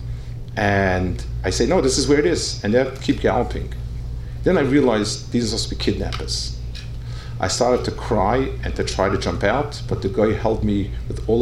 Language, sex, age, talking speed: English, male, 50-69, 205 wpm